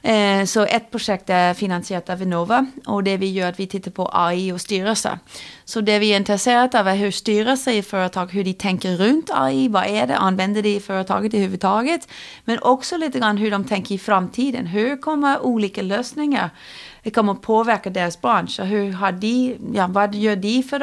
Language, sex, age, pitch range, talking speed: Swedish, female, 30-49, 185-220 Hz, 205 wpm